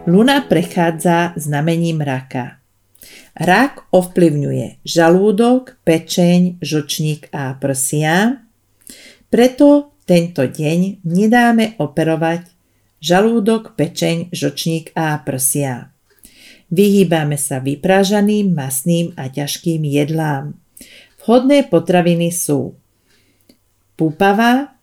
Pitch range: 145-195 Hz